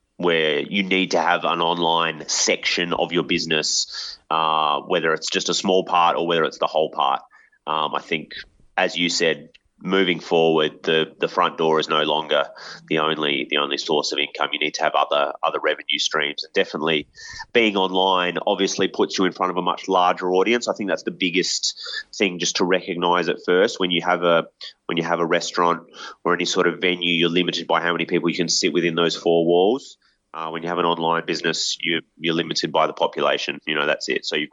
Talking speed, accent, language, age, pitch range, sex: 215 wpm, Australian, English, 30-49, 80-95 Hz, male